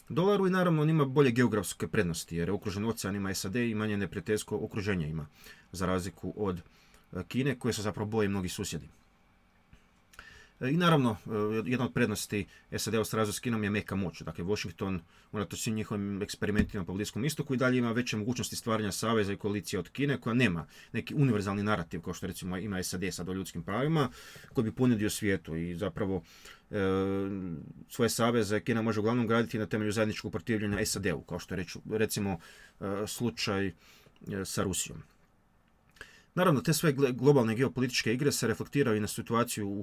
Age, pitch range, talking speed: 30-49, 100-120 Hz, 170 wpm